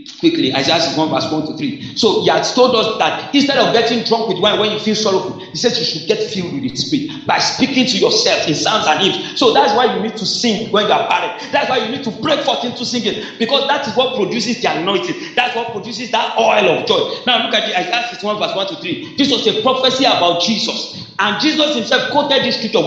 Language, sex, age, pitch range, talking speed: English, male, 40-59, 215-260 Hz, 255 wpm